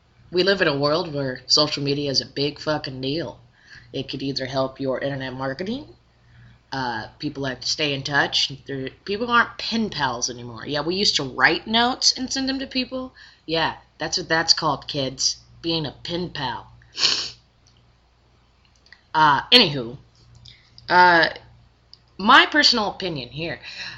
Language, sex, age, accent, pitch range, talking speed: English, female, 20-39, American, 120-170 Hz, 150 wpm